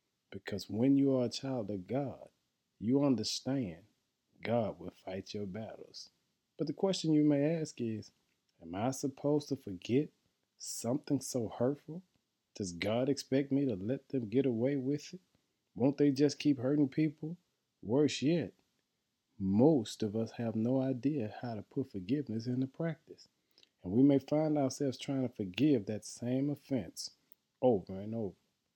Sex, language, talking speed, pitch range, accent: male, English, 155 wpm, 110-145 Hz, American